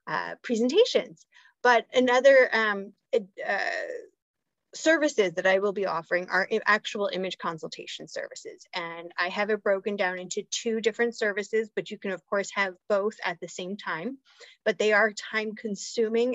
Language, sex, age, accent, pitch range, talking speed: English, female, 30-49, American, 190-245 Hz, 160 wpm